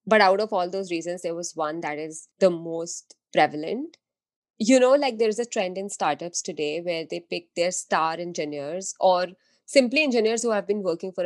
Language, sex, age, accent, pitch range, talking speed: English, female, 20-39, Indian, 170-235 Hz, 205 wpm